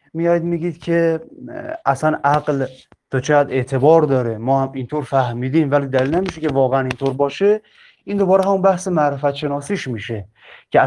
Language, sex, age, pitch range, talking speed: Persian, male, 30-49, 140-185 Hz, 150 wpm